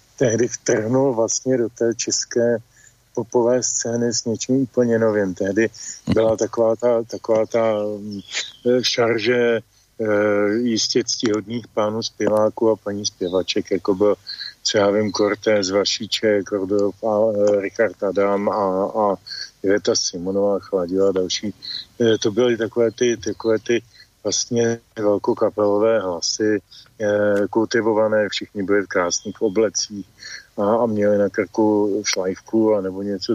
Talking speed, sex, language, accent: 130 wpm, male, English, Czech